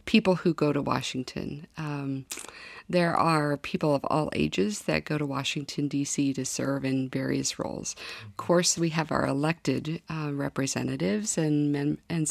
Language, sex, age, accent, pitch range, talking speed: English, female, 50-69, American, 140-170 Hz, 155 wpm